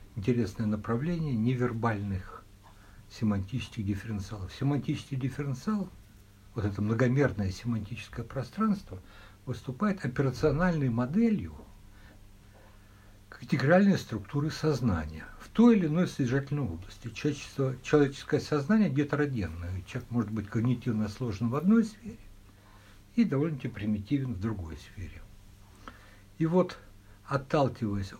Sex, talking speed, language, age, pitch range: male, 95 wpm, Russian, 60-79, 100-140 Hz